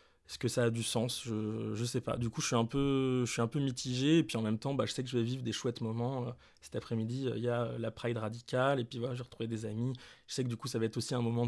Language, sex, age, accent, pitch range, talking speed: French, male, 20-39, French, 115-130 Hz, 335 wpm